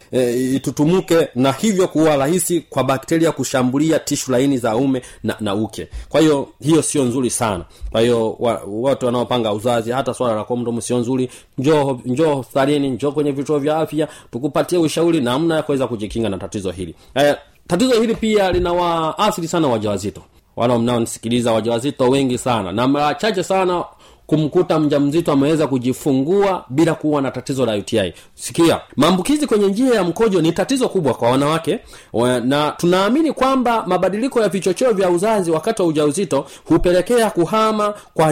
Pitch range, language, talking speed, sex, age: 125-185 Hz, Swahili, 155 wpm, male, 30-49